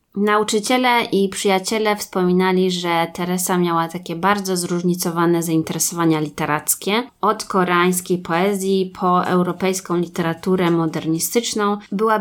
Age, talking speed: 20-39, 100 wpm